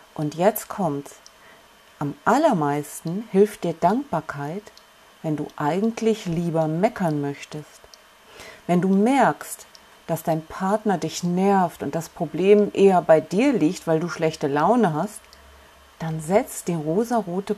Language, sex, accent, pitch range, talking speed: English, female, German, 160-220 Hz, 130 wpm